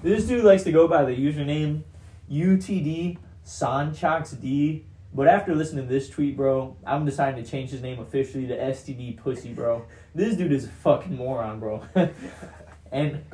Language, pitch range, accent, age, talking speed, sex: English, 115-145 Hz, American, 20-39, 155 wpm, male